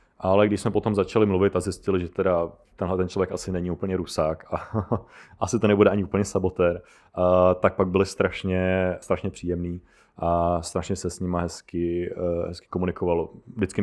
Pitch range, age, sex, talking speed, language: 90-100 Hz, 30-49, male, 180 wpm, Czech